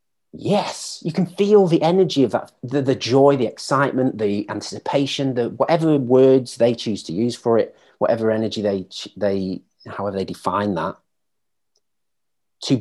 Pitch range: 105-140 Hz